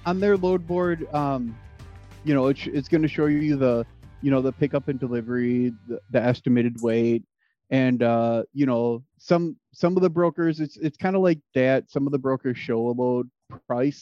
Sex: male